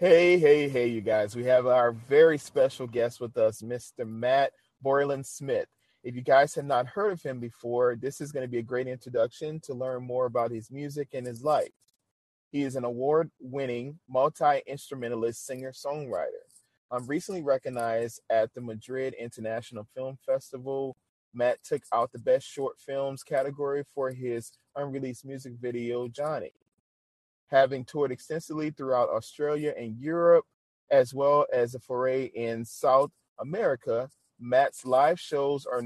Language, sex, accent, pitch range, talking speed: English, male, American, 120-145 Hz, 150 wpm